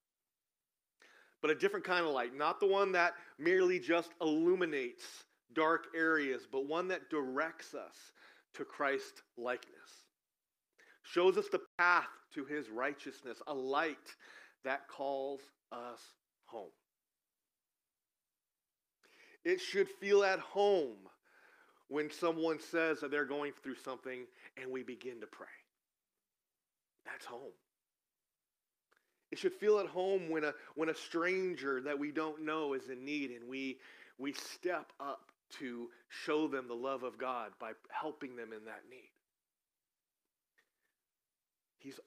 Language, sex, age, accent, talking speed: English, male, 40-59, American, 130 wpm